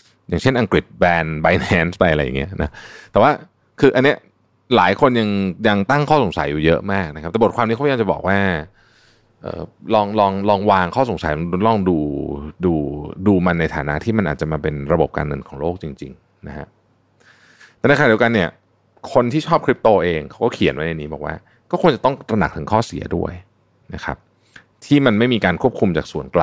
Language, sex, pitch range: Thai, male, 80-115 Hz